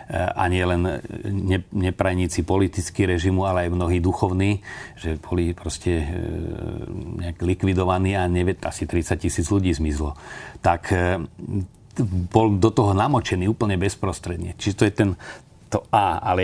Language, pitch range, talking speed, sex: Slovak, 85-110 Hz, 130 wpm, male